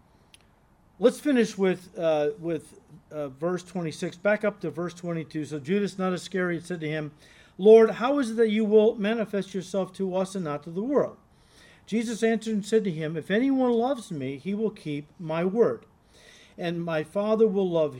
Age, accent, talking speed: 50-69, American, 190 wpm